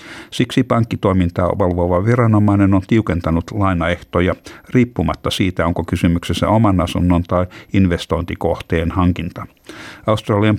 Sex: male